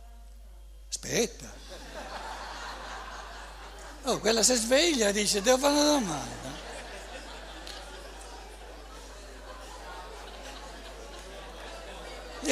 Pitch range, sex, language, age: 165-240 Hz, male, Italian, 60-79